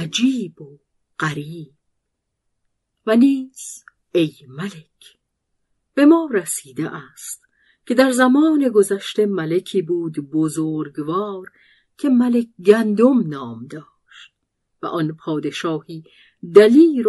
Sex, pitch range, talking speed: female, 160-230 Hz, 95 wpm